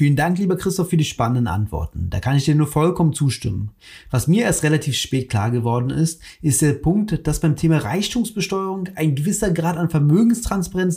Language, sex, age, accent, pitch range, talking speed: German, male, 30-49, German, 125-175 Hz, 190 wpm